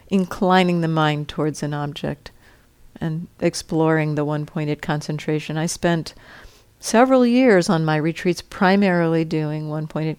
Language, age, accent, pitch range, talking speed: English, 50-69, American, 155-190 Hz, 125 wpm